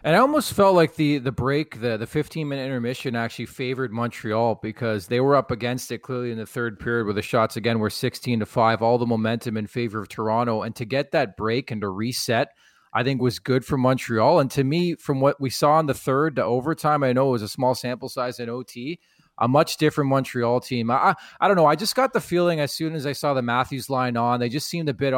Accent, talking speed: American, 250 wpm